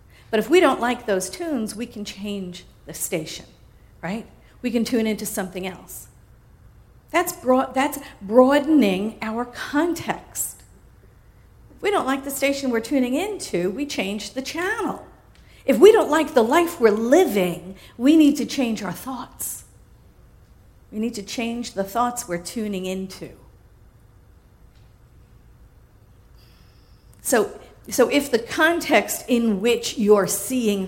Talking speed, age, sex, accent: 135 wpm, 50-69, female, American